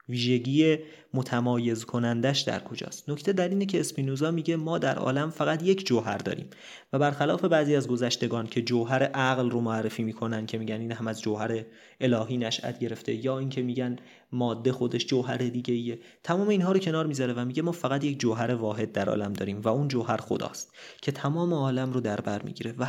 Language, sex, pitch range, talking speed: Persian, male, 115-155 Hz, 185 wpm